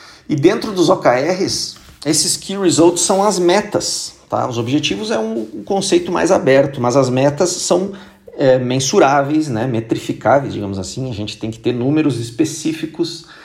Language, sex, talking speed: Portuguese, male, 155 wpm